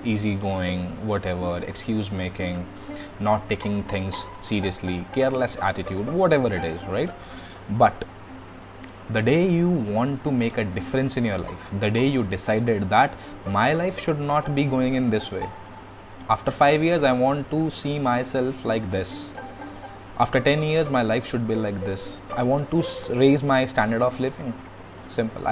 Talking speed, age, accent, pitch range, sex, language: 160 wpm, 20-39, native, 100-130 Hz, male, Hindi